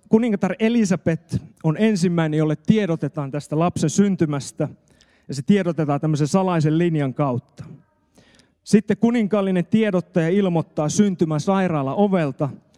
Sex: male